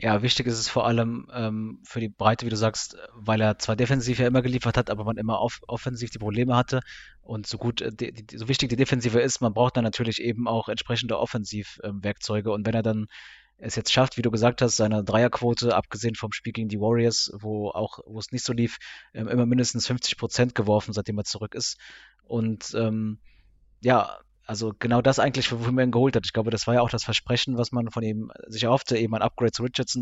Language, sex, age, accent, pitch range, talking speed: German, male, 20-39, German, 110-120 Hz, 230 wpm